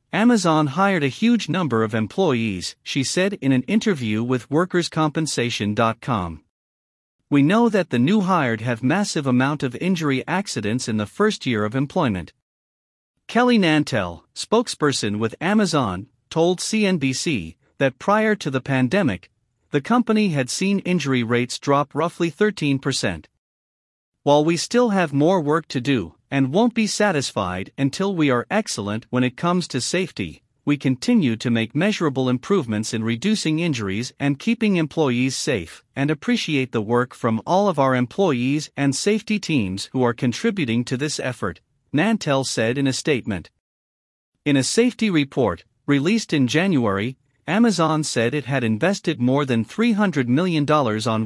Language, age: English, 50-69